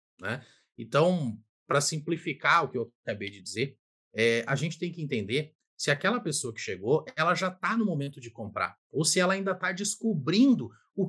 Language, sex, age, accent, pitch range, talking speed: Portuguese, male, 30-49, Brazilian, 145-230 Hz, 190 wpm